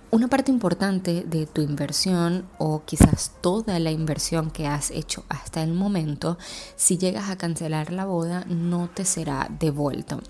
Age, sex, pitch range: 20-39, female, 150-175 Hz